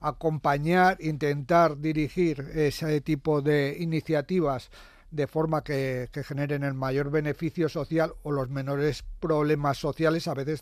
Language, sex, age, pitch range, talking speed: Spanish, male, 40-59, 140-165 Hz, 130 wpm